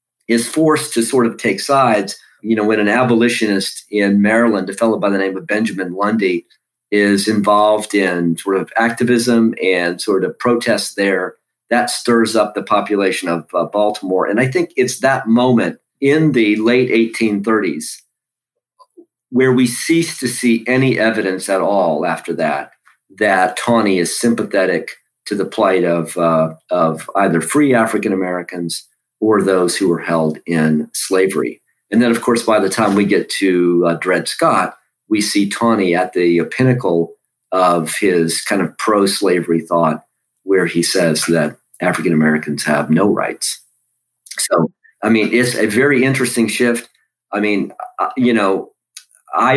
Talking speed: 160 wpm